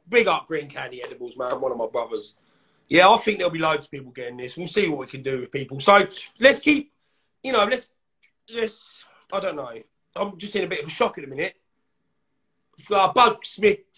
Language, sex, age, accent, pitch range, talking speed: English, male, 30-49, British, 150-220 Hz, 225 wpm